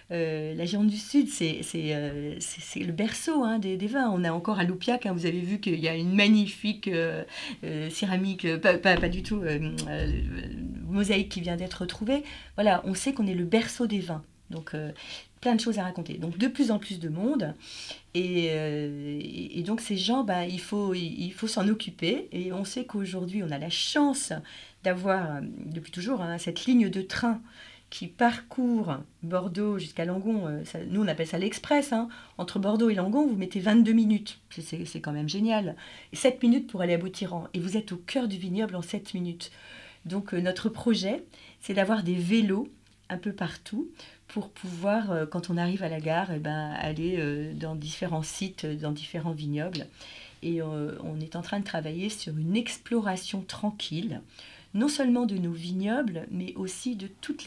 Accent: French